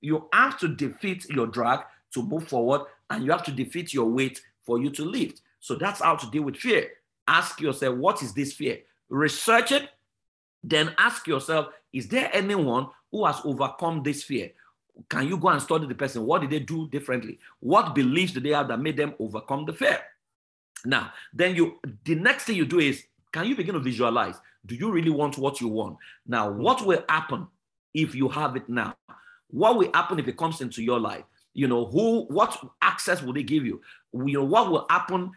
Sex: male